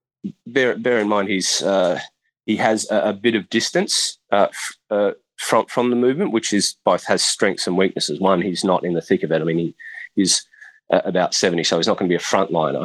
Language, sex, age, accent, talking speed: English, male, 30-49, Australian, 230 wpm